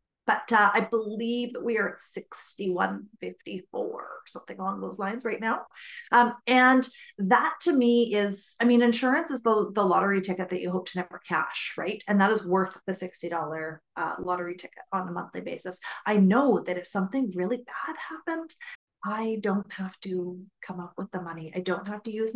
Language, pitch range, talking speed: English, 180-230 Hz, 195 wpm